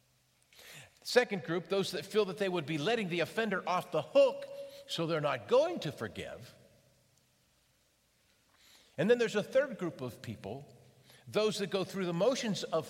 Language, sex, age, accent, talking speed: English, male, 50-69, American, 165 wpm